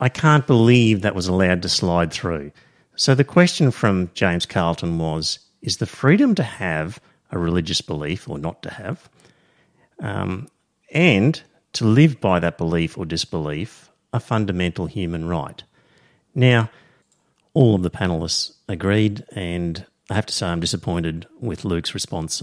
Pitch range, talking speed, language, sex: 85-130 Hz, 155 wpm, English, male